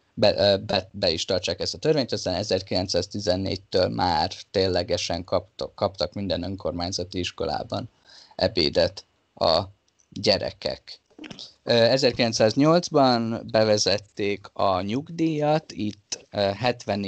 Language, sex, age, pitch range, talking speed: Hungarian, male, 20-39, 95-115 Hz, 90 wpm